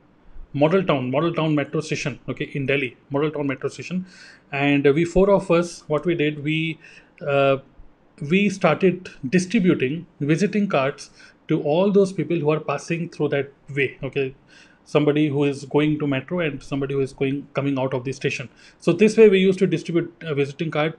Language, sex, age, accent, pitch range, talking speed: Hindi, male, 30-49, native, 145-180 Hz, 190 wpm